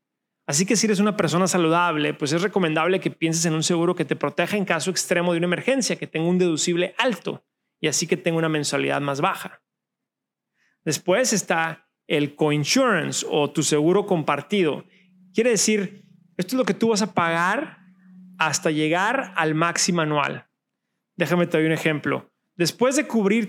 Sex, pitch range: male, 165-205 Hz